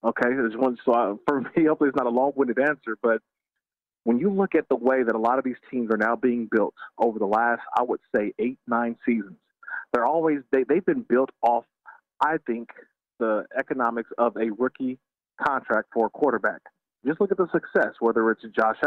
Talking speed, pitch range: 205 wpm, 120-145 Hz